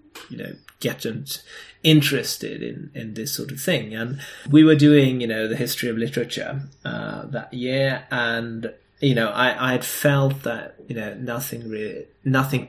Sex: male